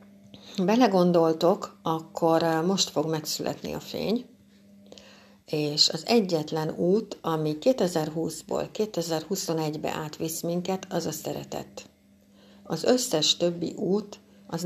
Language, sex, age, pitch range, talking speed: Hungarian, female, 60-79, 155-180 Hz, 100 wpm